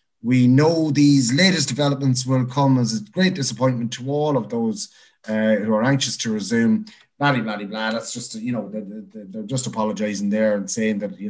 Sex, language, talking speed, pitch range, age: male, English, 195 wpm, 110-145 Hz, 30-49